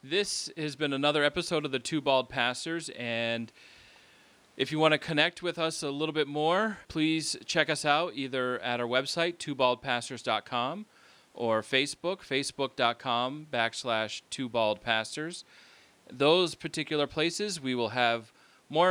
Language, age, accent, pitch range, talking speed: English, 30-49, American, 115-150 Hz, 140 wpm